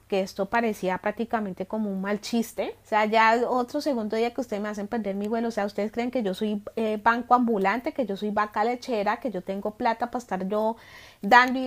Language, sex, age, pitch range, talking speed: Spanish, female, 30-49, 200-235 Hz, 230 wpm